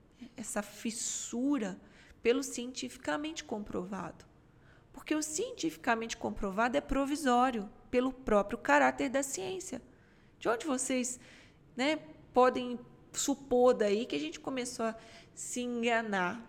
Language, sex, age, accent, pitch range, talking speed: Portuguese, female, 20-39, Brazilian, 205-285 Hz, 110 wpm